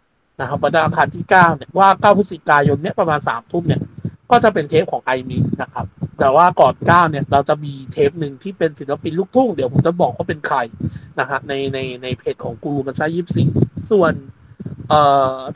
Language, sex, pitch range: Thai, male, 150-195 Hz